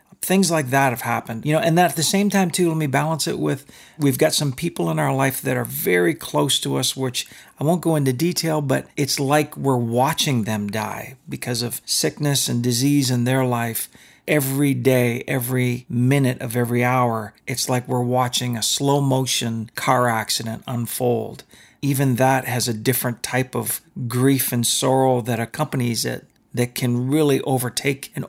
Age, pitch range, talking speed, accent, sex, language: 40-59, 125-175 Hz, 185 wpm, American, male, English